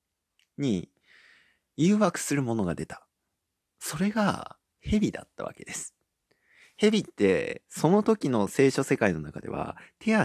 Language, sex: Japanese, male